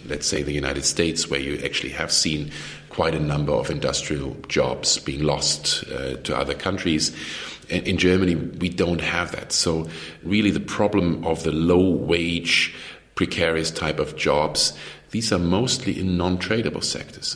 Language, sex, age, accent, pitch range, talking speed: English, male, 50-69, German, 75-85 Hz, 155 wpm